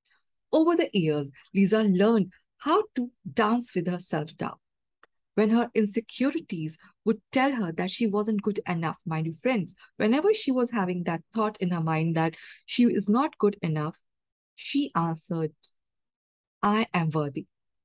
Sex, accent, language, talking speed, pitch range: female, Indian, English, 150 wpm, 170-235 Hz